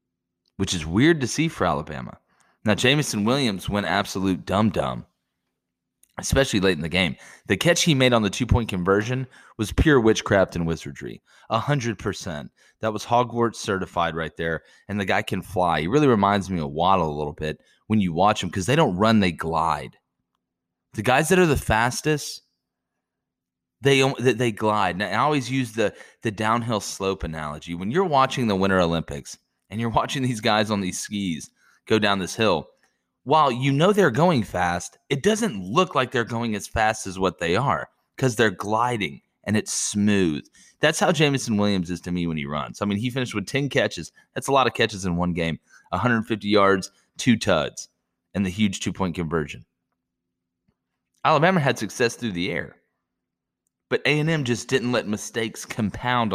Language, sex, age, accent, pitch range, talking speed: English, male, 30-49, American, 90-125 Hz, 180 wpm